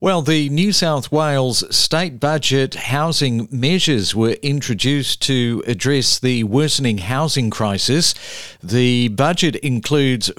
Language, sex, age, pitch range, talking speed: English, male, 50-69, 125-155 Hz, 115 wpm